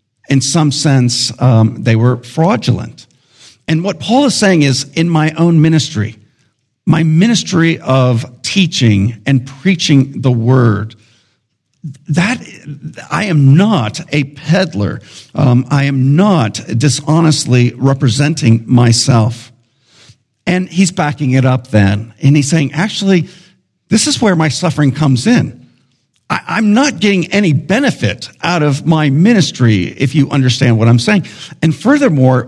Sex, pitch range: male, 120-165 Hz